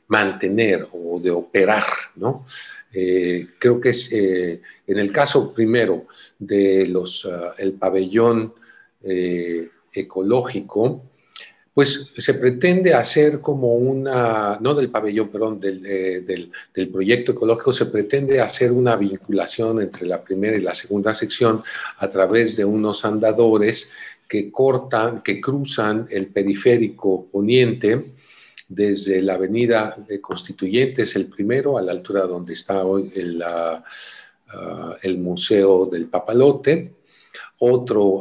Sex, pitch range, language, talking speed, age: male, 95-115 Hz, Spanish, 125 wpm, 50-69